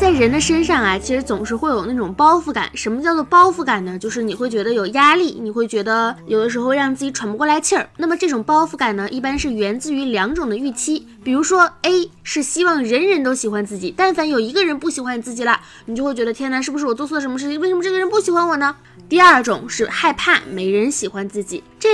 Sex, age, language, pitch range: female, 20-39, Chinese, 230-330 Hz